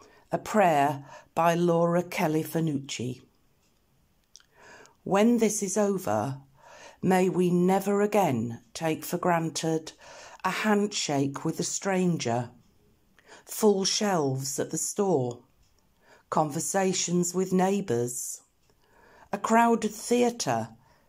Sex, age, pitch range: female, 60-79, 140-195 Hz